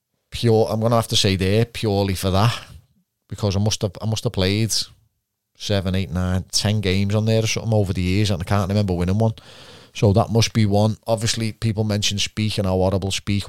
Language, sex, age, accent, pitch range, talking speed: English, male, 30-49, British, 95-115 Hz, 220 wpm